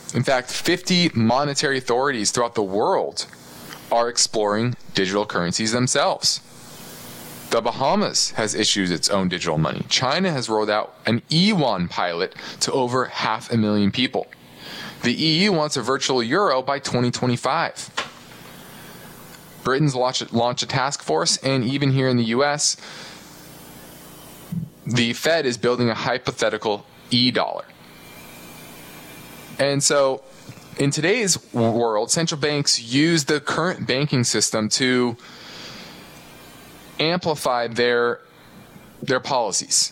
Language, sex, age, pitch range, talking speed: English, male, 20-39, 100-140 Hz, 120 wpm